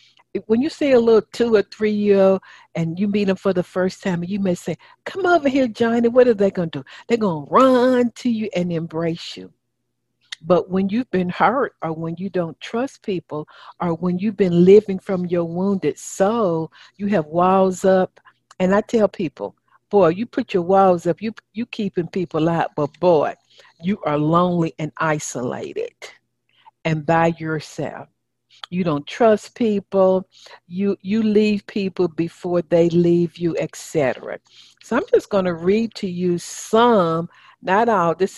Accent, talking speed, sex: American, 175 wpm, female